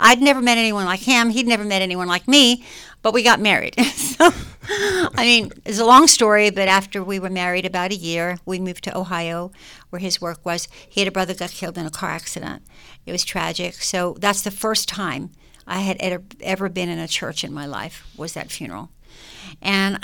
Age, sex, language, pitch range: 60-79, female, English, 175-215 Hz